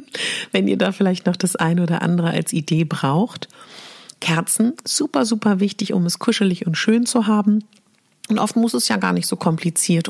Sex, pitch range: female, 165-210 Hz